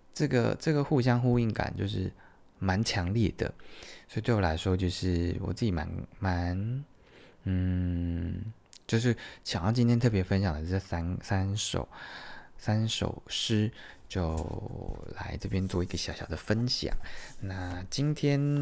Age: 20-39